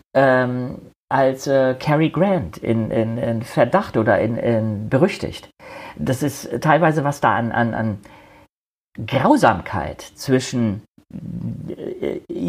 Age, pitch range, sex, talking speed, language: 40-59, 110-140 Hz, male, 115 wpm, German